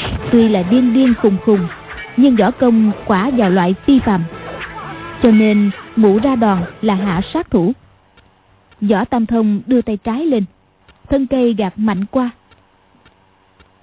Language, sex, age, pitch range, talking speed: Vietnamese, female, 20-39, 190-250 Hz, 150 wpm